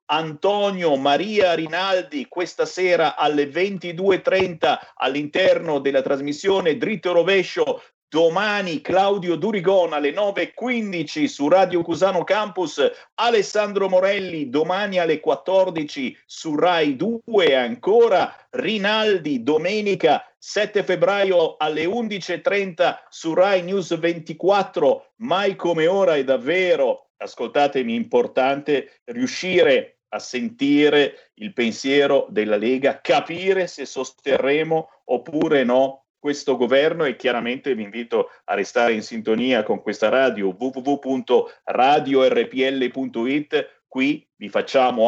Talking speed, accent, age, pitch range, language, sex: 100 wpm, native, 50-69, 135-210 Hz, Italian, male